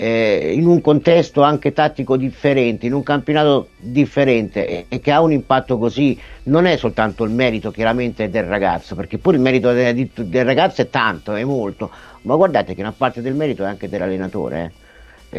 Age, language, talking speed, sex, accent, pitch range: 50-69, Italian, 175 wpm, male, native, 115-155 Hz